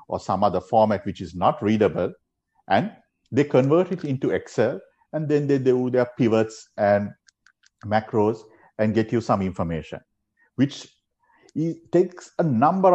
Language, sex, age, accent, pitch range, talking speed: English, male, 50-69, Indian, 110-165 Hz, 145 wpm